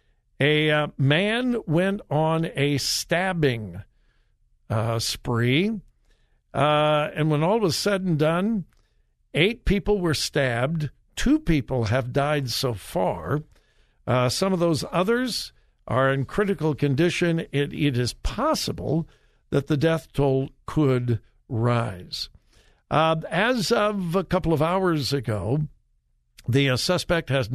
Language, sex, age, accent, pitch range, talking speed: English, male, 60-79, American, 125-175 Hz, 125 wpm